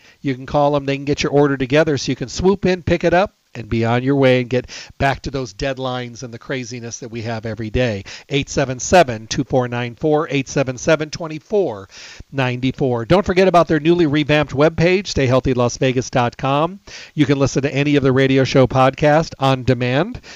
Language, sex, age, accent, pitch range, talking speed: English, male, 50-69, American, 130-165 Hz, 170 wpm